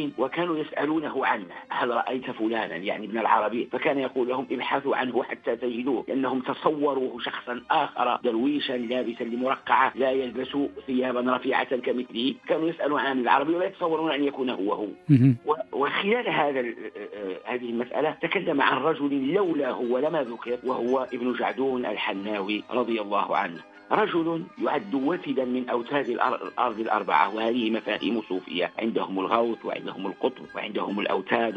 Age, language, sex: 50-69, Arabic, male